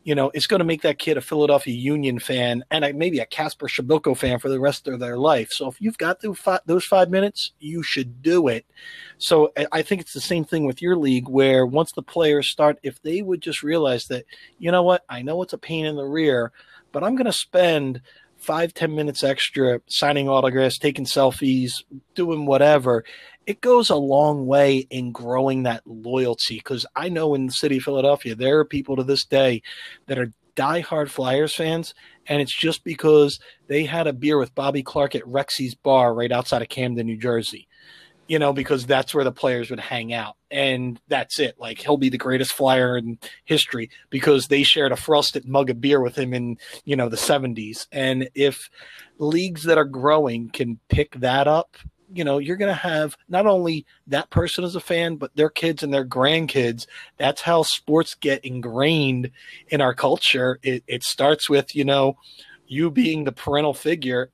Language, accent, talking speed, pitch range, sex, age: English, American, 200 wpm, 130-160 Hz, male, 40-59